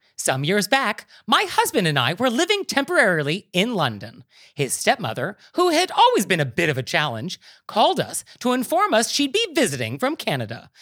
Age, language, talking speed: 30-49, English, 185 wpm